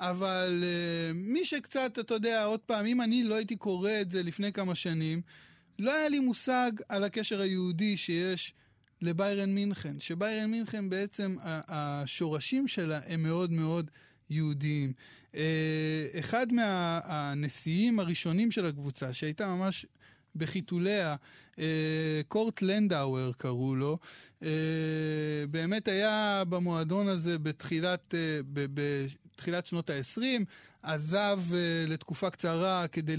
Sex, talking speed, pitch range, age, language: male, 125 wpm, 155-195 Hz, 20-39, Hebrew